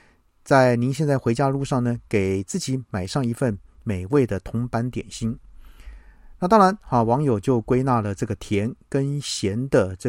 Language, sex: Chinese, male